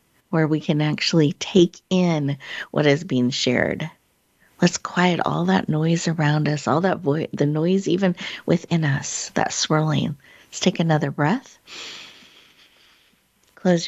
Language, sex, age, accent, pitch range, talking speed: English, female, 50-69, American, 145-180 Hz, 140 wpm